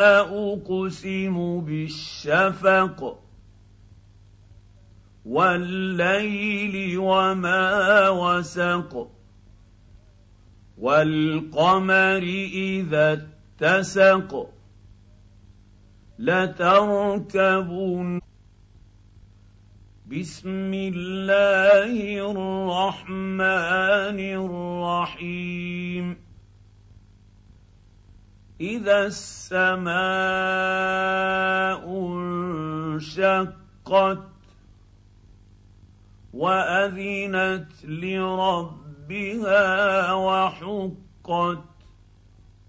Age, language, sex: 50-69, Arabic, male